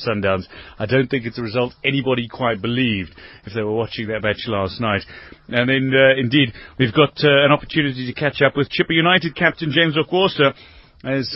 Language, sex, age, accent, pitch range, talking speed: English, male, 30-49, British, 120-165 Hz, 195 wpm